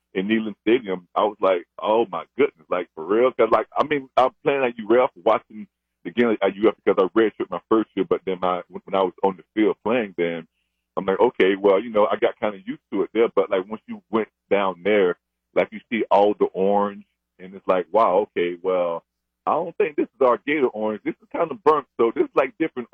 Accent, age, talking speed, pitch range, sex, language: American, 40-59, 245 wpm, 90-115 Hz, male, English